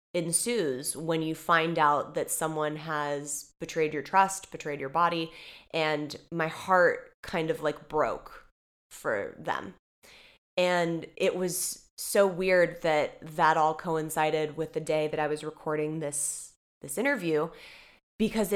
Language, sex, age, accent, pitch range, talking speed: English, female, 20-39, American, 155-180 Hz, 140 wpm